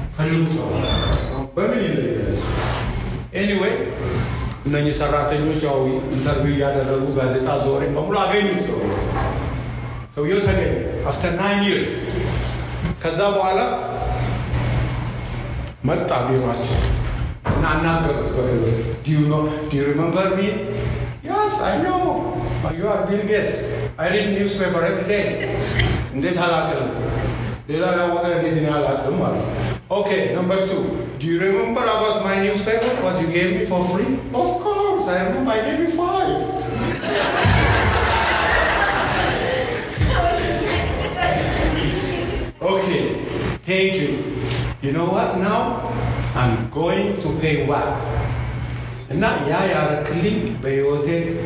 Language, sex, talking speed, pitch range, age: English, male, 90 wpm, 130-195 Hz, 60-79